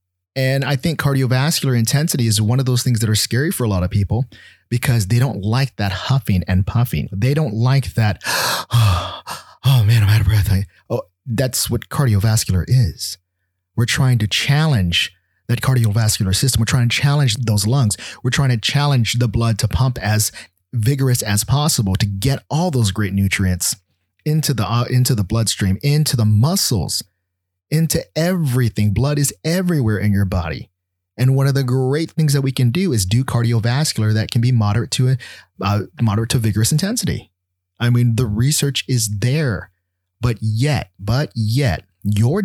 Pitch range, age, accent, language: 100-135 Hz, 30-49, American, English